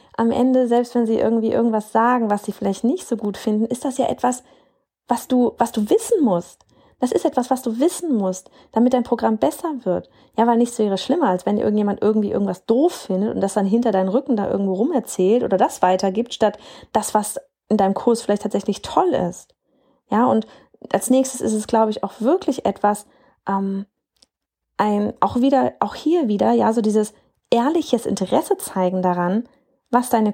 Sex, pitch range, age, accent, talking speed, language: female, 200-265 Hz, 30-49, German, 195 wpm, German